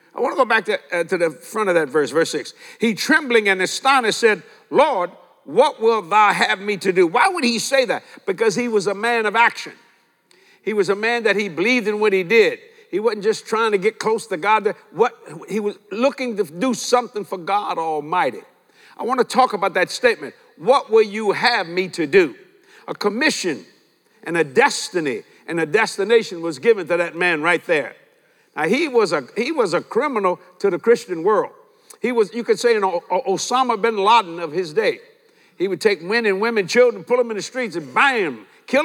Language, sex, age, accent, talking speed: English, male, 60-79, American, 215 wpm